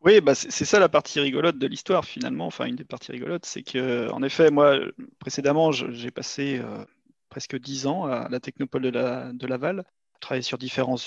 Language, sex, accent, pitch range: French, male, French, 130-160 Hz